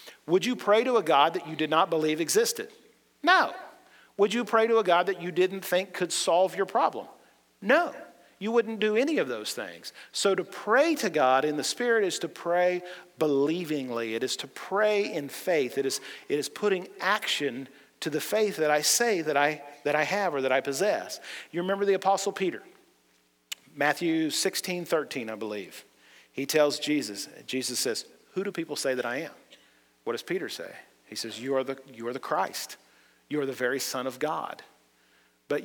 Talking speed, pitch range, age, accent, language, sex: 195 wpm, 130-185 Hz, 40-59, American, English, male